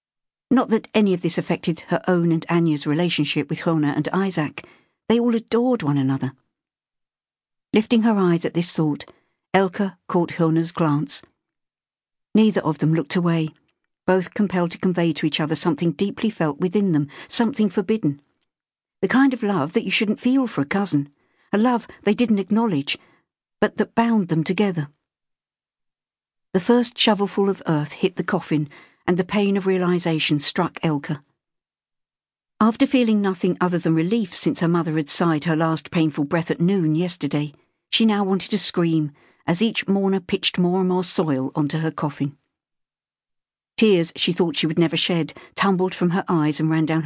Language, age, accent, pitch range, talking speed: English, 60-79, British, 155-195 Hz, 170 wpm